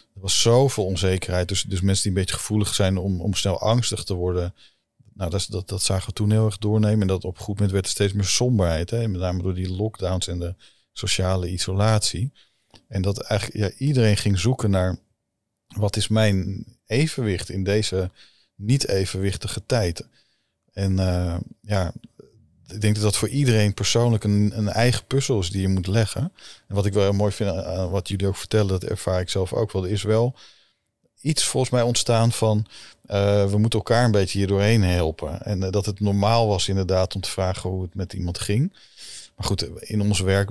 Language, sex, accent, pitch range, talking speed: Dutch, male, Dutch, 95-110 Hz, 200 wpm